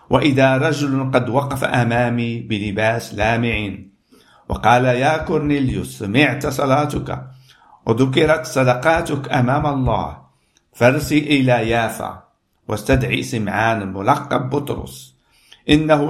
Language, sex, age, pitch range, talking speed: Arabic, male, 50-69, 110-140 Hz, 90 wpm